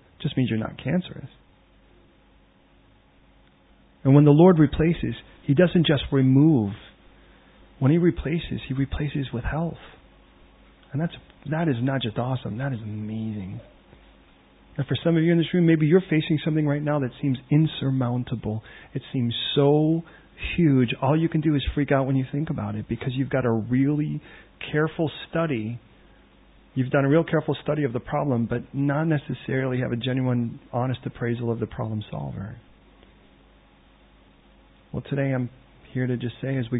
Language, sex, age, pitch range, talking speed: English, male, 40-59, 95-145 Hz, 170 wpm